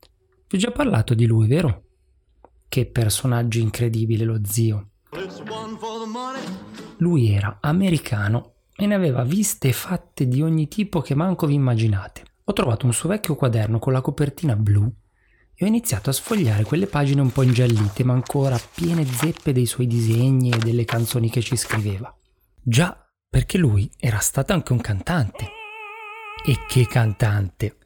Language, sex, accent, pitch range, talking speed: Italian, male, native, 110-145 Hz, 155 wpm